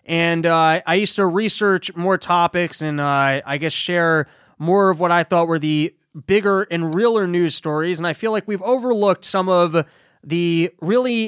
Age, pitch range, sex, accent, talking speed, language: 20-39, 150-195 Hz, male, American, 185 wpm, English